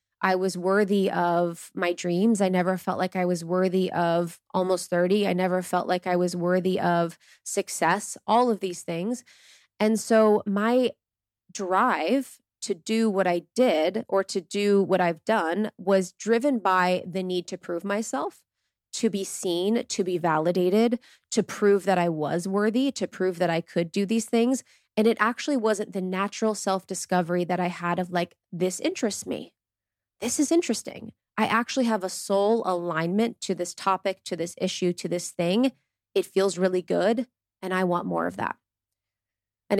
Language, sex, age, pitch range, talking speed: English, female, 20-39, 175-210 Hz, 175 wpm